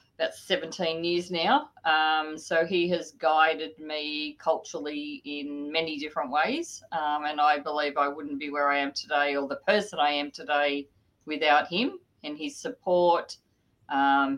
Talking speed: 160 wpm